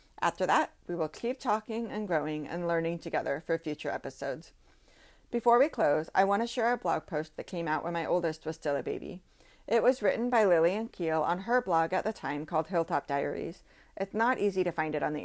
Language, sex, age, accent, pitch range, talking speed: English, female, 30-49, American, 160-215 Hz, 225 wpm